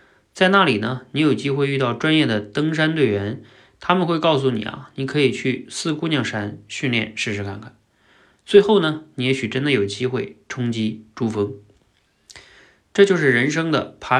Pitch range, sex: 110-135 Hz, male